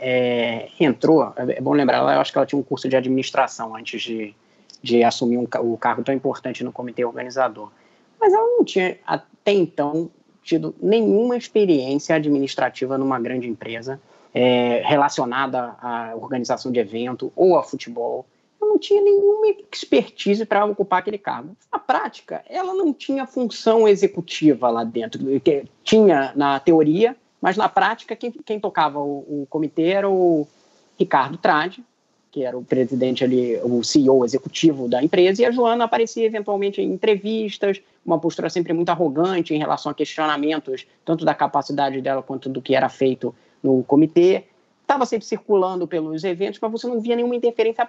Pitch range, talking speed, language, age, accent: 130-210 Hz, 165 wpm, Portuguese, 20-39, Brazilian